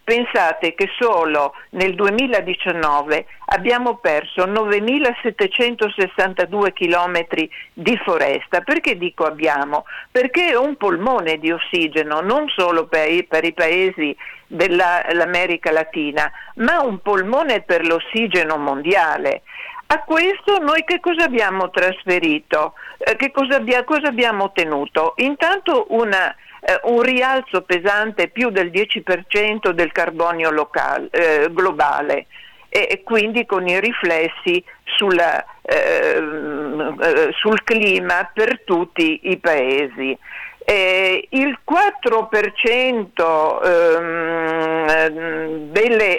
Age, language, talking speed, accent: 60-79, Italian, 95 wpm, native